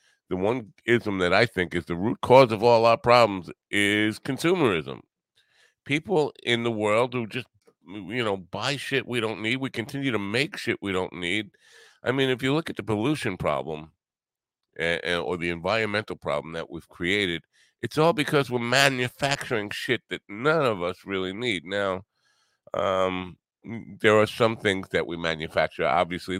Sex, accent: male, American